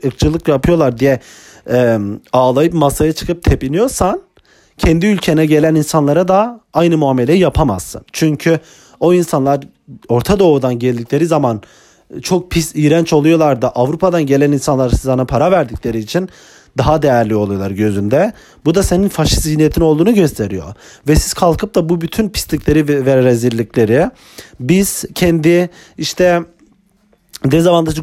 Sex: male